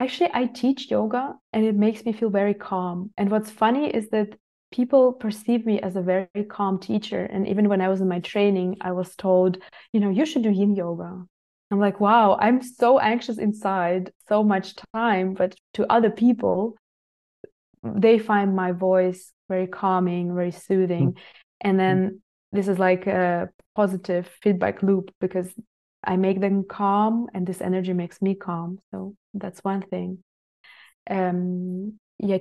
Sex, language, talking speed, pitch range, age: female, English, 165 wpm, 185-215 Hz, 20-39